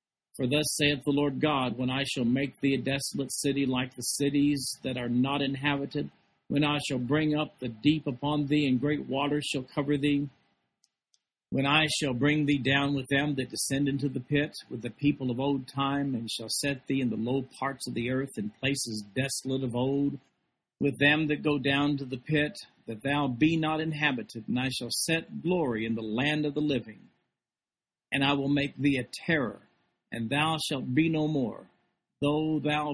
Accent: American